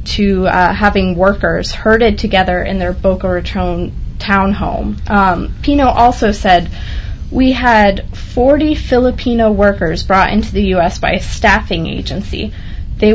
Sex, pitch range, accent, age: female, 180-215 Hz, American, 20-39